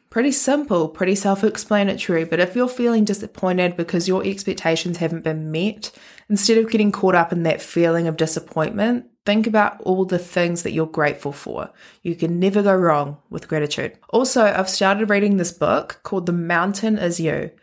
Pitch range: 165-210 Hz